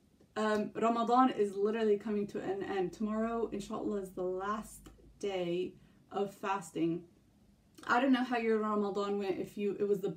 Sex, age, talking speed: female, 20-39, 165 wpm